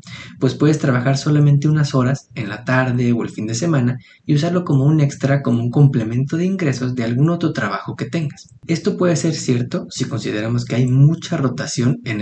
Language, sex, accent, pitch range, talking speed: Spanish, male, Mexican, 120-145 Hz, 200 wpm